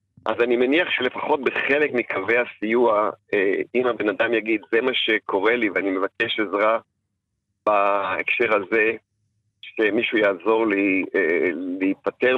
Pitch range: 105-170 Hz